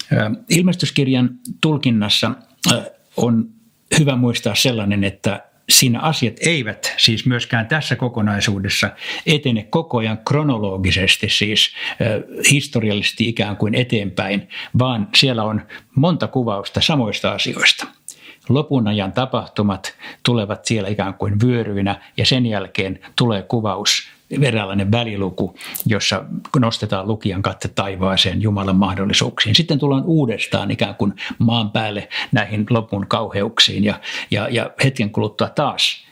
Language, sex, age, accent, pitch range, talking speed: Finnish, male, 60-79, native, 100-130 Hz, 115 wpm